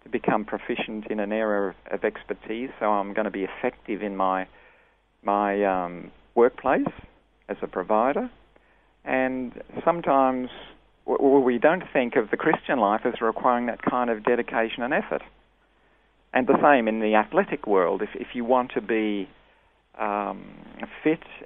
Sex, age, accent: male, 40-59, Australian